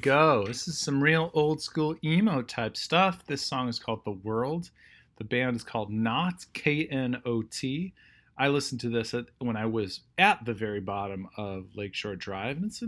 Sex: male